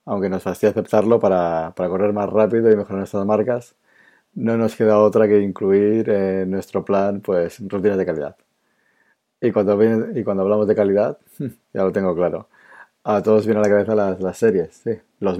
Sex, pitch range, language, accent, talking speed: male, 95-110 Hz, Spanish, Spanish, 190 wpm